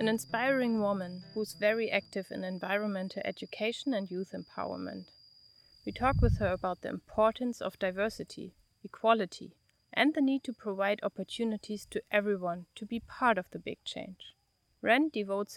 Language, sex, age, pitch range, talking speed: English, female, 30-49, 180-225 Hz, 155 wpm